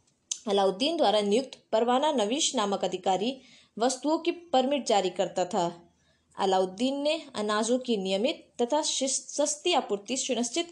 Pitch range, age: 200-285 Hz, 20-39